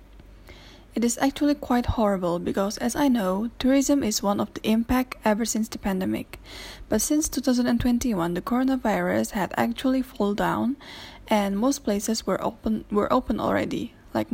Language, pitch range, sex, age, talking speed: English, 195-245 Hz, female, 10-29, 155 wpm